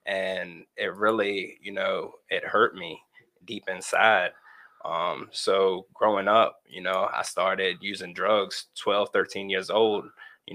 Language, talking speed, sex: English, 140 wpm, male